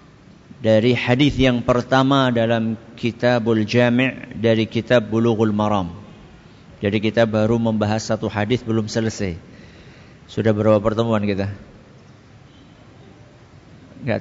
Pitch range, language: 115-145 Hz, Malay